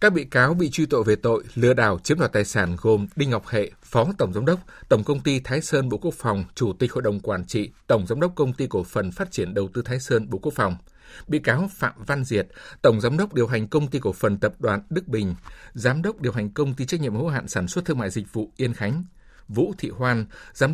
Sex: male